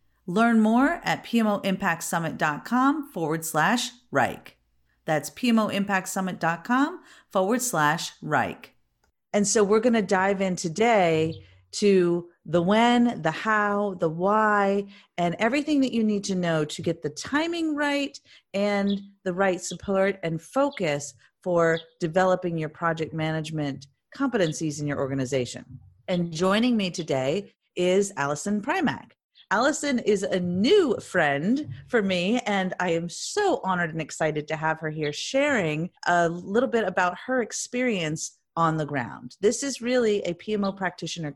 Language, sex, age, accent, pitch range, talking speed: English, female, 40-59, American, 155-215 Hz, 140 wpm